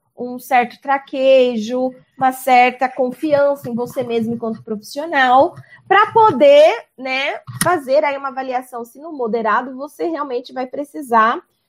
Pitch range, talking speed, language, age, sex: 210-260 Hz, 130 wpm, Portuguese, 20-39, female